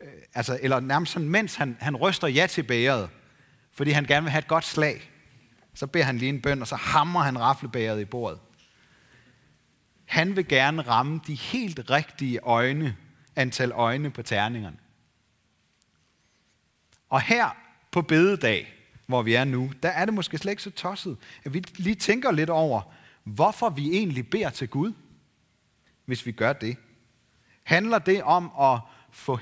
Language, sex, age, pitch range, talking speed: Danish, male, 30-49, 120-165 Hz, 165 wpm